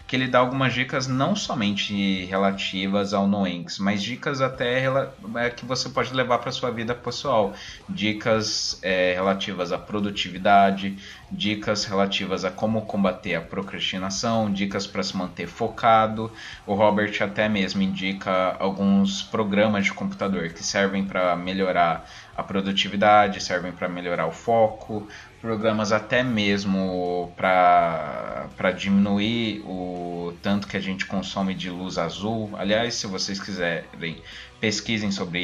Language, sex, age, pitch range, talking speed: Portuguese, male, 20-39, 90-105 Hz, 135 wpm